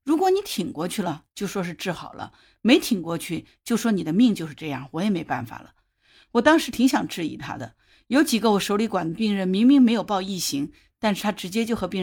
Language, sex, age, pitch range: Chinese, female, 50-69, 180-235 Hz